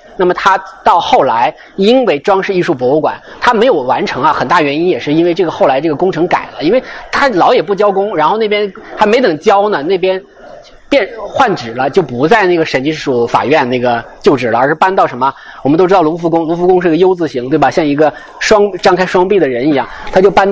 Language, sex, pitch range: Chinese, male, 150-205 Hz